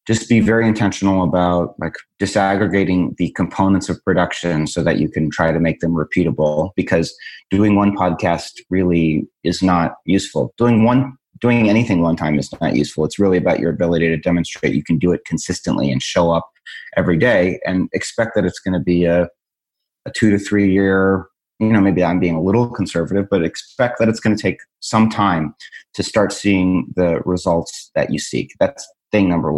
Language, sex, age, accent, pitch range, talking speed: English, male, 30-49, American, 85-100 Hz, 195 wpm